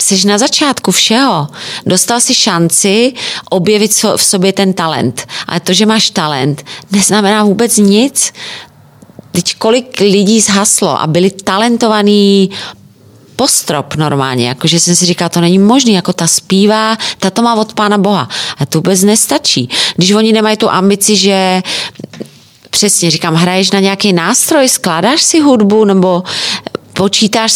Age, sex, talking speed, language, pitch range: 30-49, female, 145 wpm, Czech, 170-215 Hz